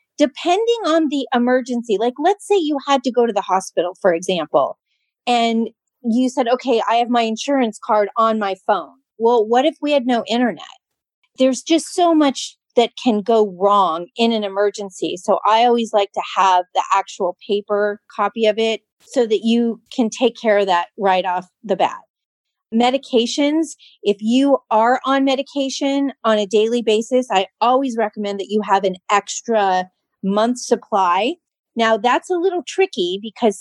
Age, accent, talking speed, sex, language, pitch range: 30-49, American, 170 wpm, female, English, 200-245 Hz